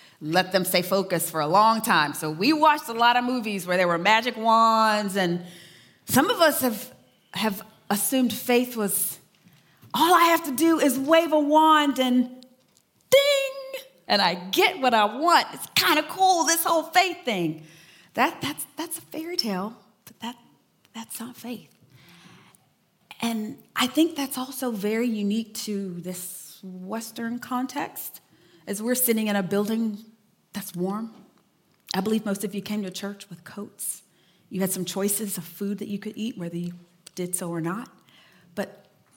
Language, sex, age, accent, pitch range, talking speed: English, female, 30-49, American, 190-260 Hz, 170 wpm